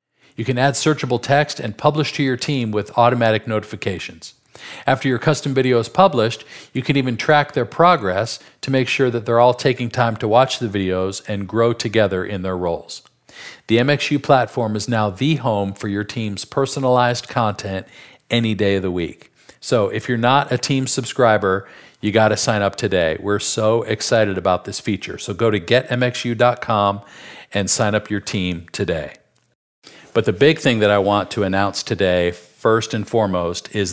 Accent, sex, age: American, male, 50-69